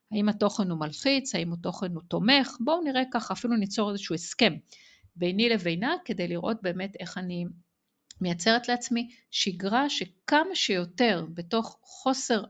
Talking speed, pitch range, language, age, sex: 140 wpm, 180-250 Hz, Hebrew, 50-69, female